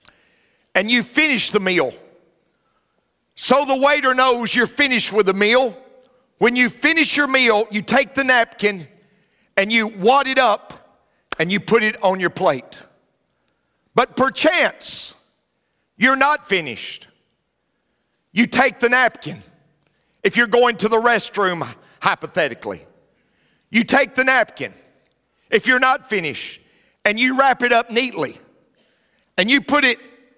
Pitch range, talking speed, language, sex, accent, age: 215-275 Hz, 135 wpm, English, male, American, 50-69